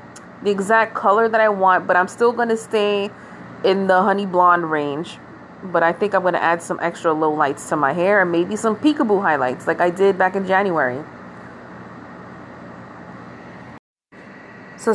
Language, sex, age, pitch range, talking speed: English, female, 30-49, 175-210 Hz, 170 wpm